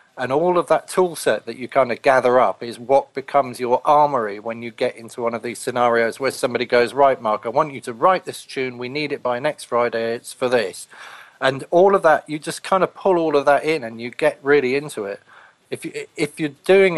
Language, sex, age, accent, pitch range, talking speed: English, male, 40-59, British, 125-150 Hz, 245 wpm